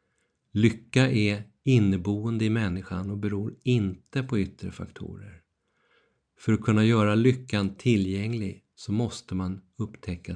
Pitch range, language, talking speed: 95-115 Hz, Swedish, 120 wpm